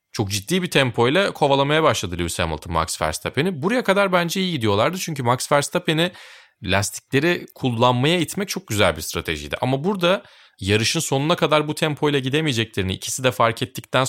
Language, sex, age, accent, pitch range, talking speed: Turkish, male, 30-49, native, 95-140 Hz, 160 wpm